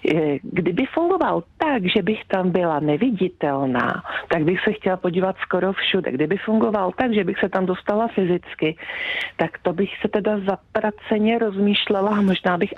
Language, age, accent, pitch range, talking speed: Czech, 40-59, native, 175-215 Hz, 160 wpm